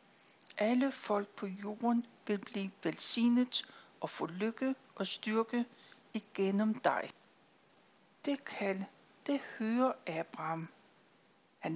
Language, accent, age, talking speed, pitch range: Danish, native, 60-79, 100 wpm, 200-240 Hz